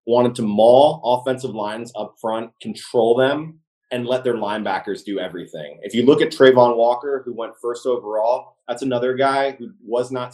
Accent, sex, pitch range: American, male, 110-135 Hz